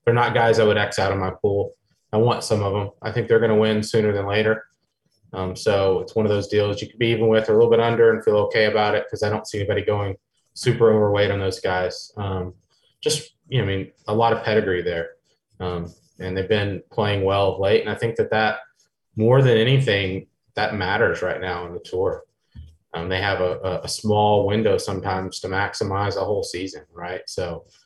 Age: 20-39